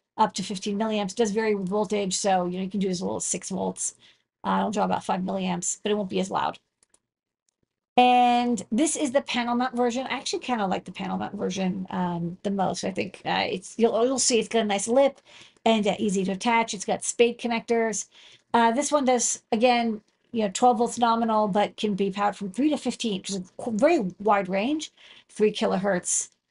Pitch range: 195-240 Hz